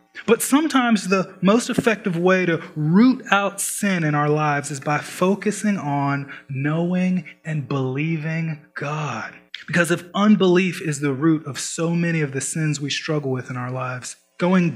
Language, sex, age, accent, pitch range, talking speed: English, male, 20-39, American, 155-200 Hz, 165 wpm